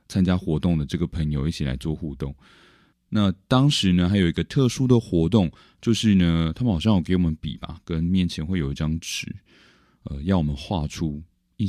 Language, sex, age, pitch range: Chinese, male, 20-39, 75-95 Hz